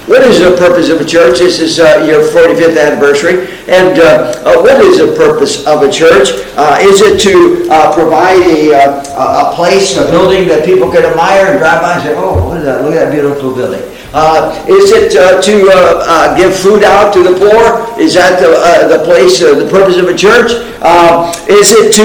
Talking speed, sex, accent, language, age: 220 wpm, male, American, English, 60-79